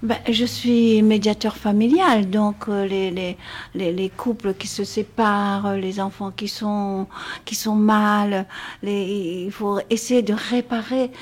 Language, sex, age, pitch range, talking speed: French, female, 60-79, 200-250 Hz, 140 wpm